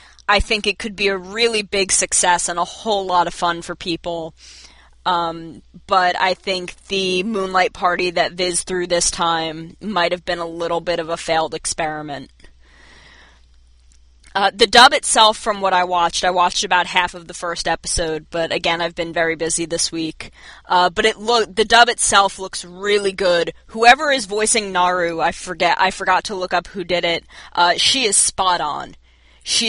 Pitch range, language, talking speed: 170-205 Hz, English, 190 wpm